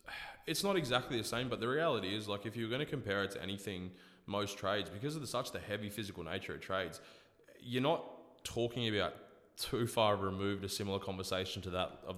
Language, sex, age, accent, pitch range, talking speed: English, male, 20-39, Australian, 90-100 Hz, 210 wpm